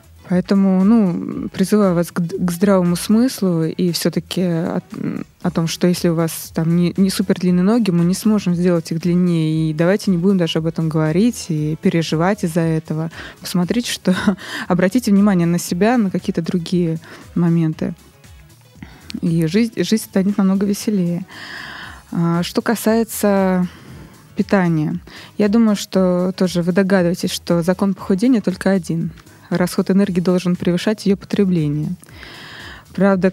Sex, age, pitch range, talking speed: female, 20-39, 170-200 Hz, 140 wpm